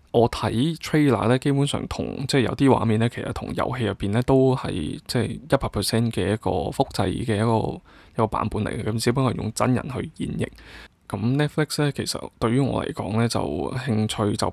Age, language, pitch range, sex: 20-39, Chinese, 105-125 Hz, male